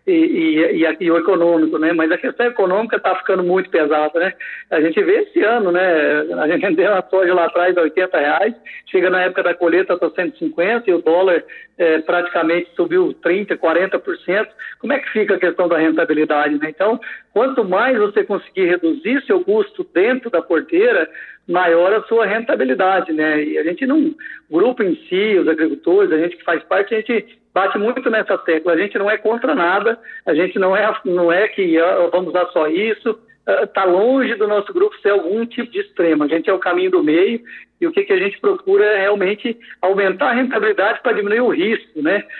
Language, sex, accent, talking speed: Portuguese, male, Brazilian, 200 wpm